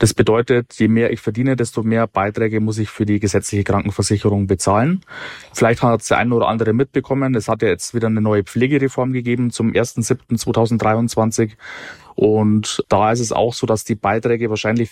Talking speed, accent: 180 wpm, German